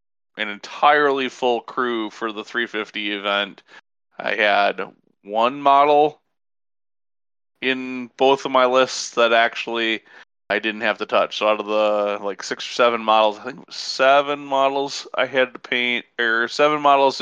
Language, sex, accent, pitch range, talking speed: English, male, American, 110-135 Hz, 160 wpm